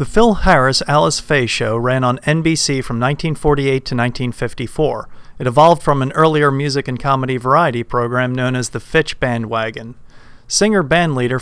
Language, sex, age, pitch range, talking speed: English, male, 40-59, 120-145 Hz, 145 wpm